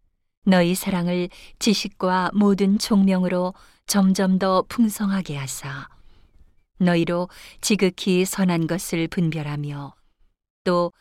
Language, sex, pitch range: Korean, female, 160-200 Hz